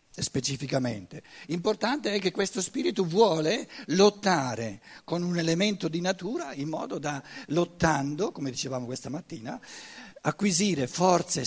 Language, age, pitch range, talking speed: Italian, 60-79, 135-185 Hz, 120 wpm